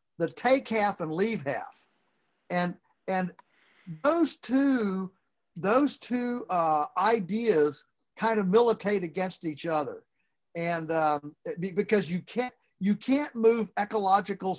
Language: English